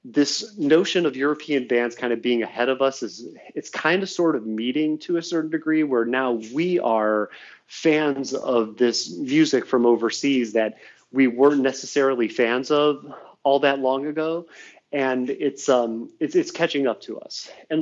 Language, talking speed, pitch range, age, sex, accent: English, 175 wpm, 120-155 Hz, 30-49, male, American